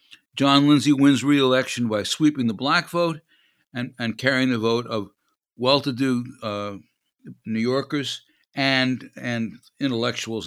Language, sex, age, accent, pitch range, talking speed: English, male, 60-79, American, 110-135 Hz, 125 wpm